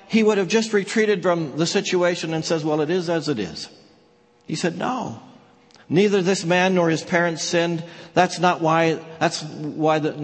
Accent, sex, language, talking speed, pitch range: American, male, English, 190 wpm, 125-175 Hz